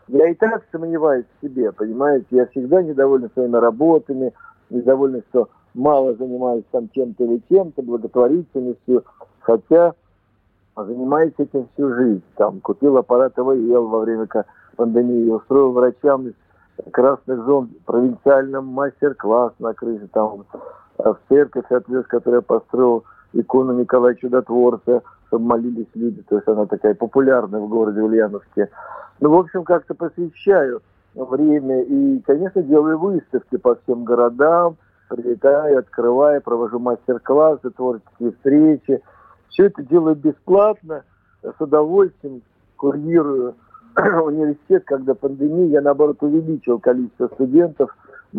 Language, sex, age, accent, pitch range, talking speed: Russian, male, 50-69, native, 120-150 Hz, 120 wpm